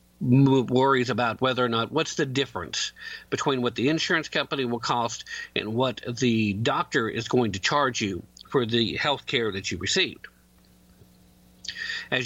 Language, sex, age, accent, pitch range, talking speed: English, male, 50-69, American, 110-145 Hz, 155 wpm